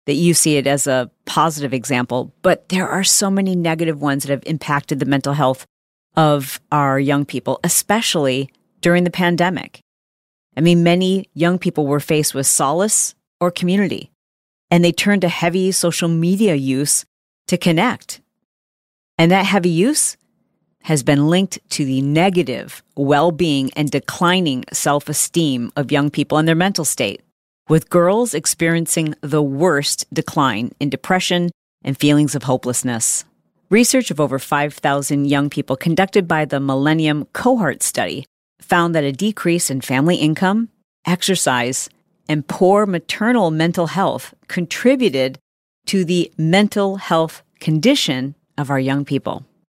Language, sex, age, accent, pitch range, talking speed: English, female, 40-59, American, 140-180 Hz, 145 wpm